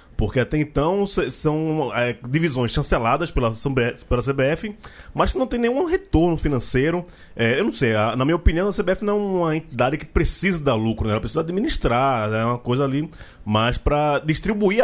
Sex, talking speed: male, 185 wpm